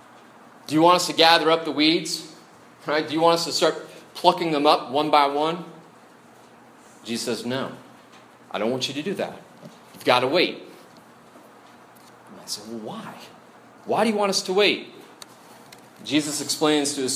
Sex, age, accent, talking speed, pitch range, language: male, 30-49, American, 180 wpm, 120-165 Hz, English